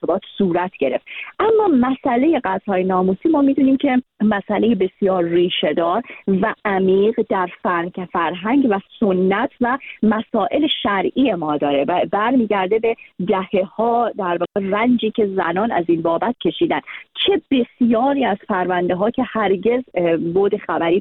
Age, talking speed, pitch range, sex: 40-59, 130 wpm, 175-230 Hz, female